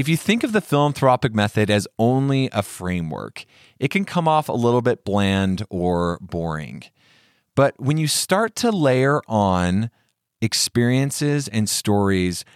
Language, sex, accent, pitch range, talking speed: English, male, American, 95-125 Hz, 150 wpm